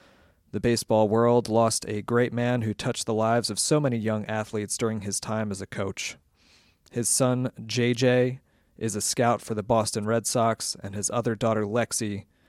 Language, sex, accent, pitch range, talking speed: English, male, American, 105-120 Hz, 185 wpm